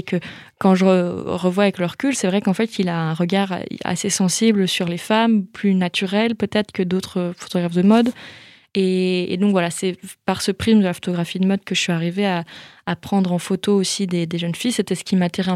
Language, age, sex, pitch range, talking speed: French, 20-39, female, 180-200 Hz, 235 wpm